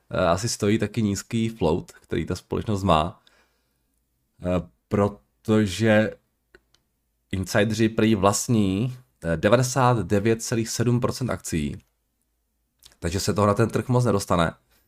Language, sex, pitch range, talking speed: Czech, male, 85-110 Hz, 95 wpm